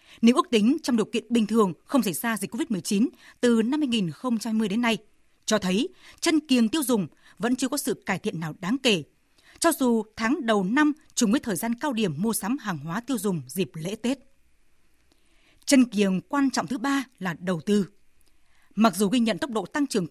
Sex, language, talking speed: female, Vietnamese, 210 wpm